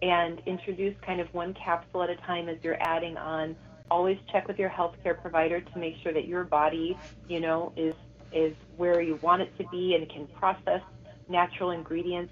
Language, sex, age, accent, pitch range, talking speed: English, female, 30-49, American, 165-205 Hz, 195 wpm